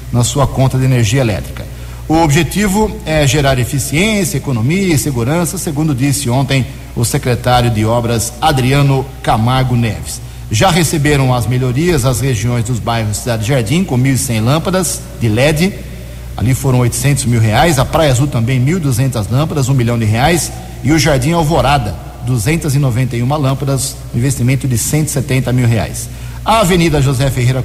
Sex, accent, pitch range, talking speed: male, Brazilian, 120-145 Hz, 150 wpm